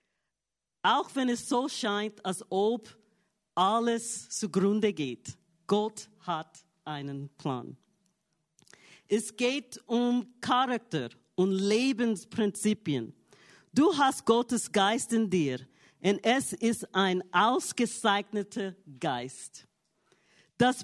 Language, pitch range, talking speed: English, 185-235 Hz, 95 wpm